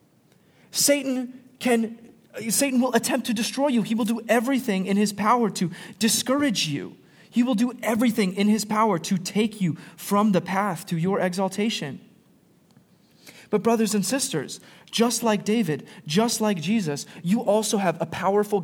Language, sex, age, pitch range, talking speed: English, male, 30-49, 170-220 Hz, 160 wpm